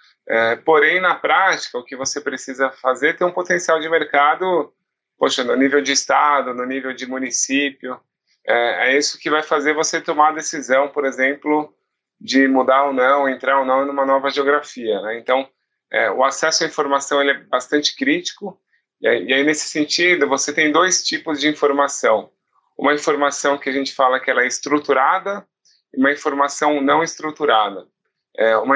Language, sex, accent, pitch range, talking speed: Portuguese, male, Brazilian, 135-155 Hz, 175 wpm